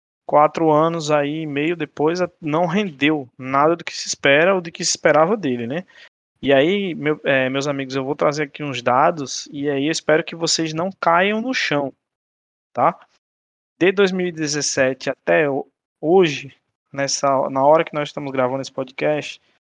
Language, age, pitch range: Portuguese, 20-39, 145-180 Hz